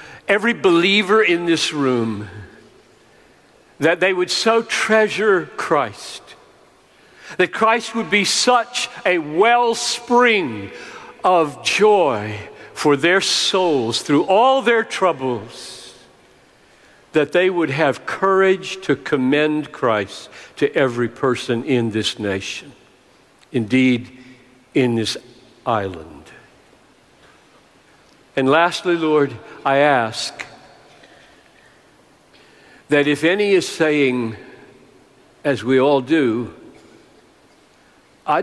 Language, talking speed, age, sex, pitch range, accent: English, 95 wpm, 60-79, male, 130-205 Hz, American